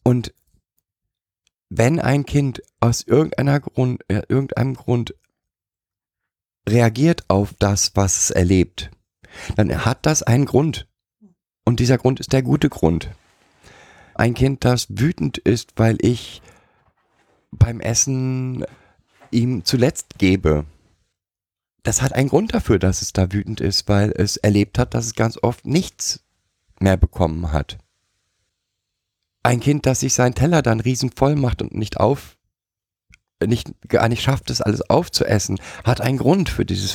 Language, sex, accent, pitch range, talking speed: German, male, German, 95-130 Hz, 140 wpm